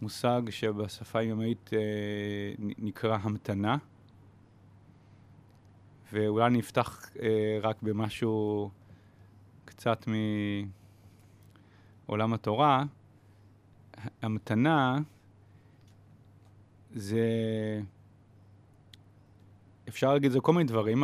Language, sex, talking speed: Hebrew, male, 65 wpm